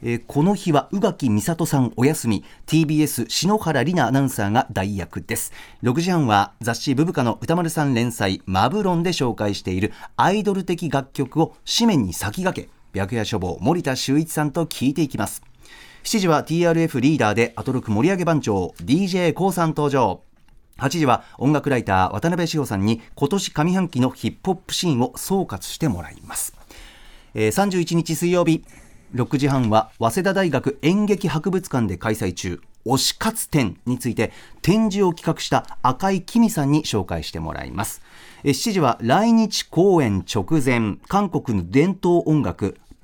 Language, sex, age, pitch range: Japanese, male, 40-59, 115-170 Hz